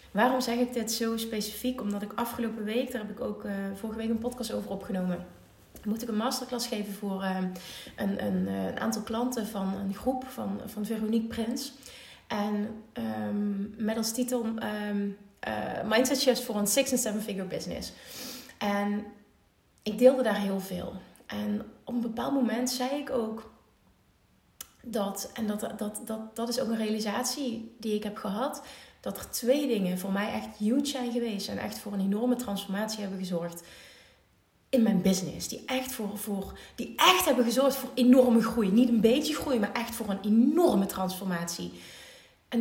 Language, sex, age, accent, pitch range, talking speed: Dutch, female, 30-49, Dutch, 195-245 Hz, 175 wpm